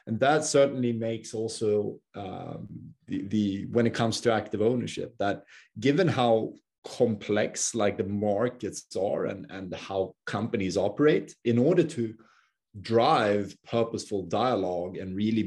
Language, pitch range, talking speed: English, 105-120 Hz, 135 wpm